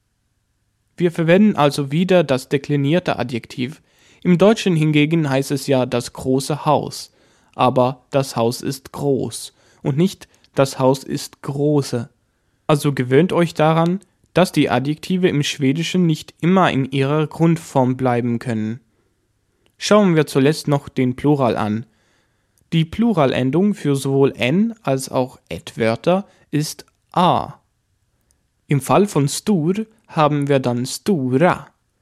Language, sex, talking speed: German, male, 125 wpm